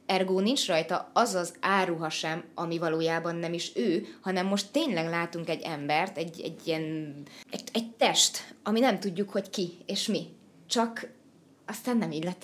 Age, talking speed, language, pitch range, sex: 20-39, 175 wpm, Hungarian, 180-230 Hz, female